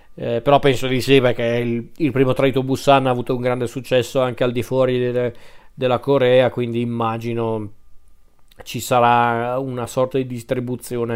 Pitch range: 120-140 Hz